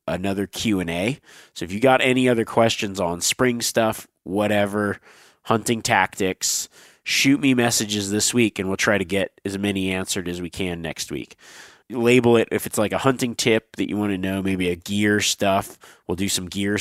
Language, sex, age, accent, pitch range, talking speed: English, male, 30-49, American, 90-115 Hz, 195 wpm